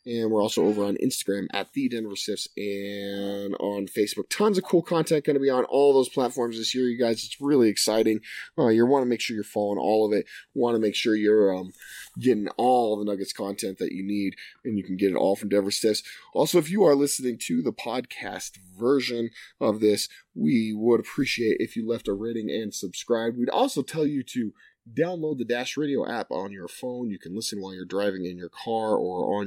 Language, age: English, 30-49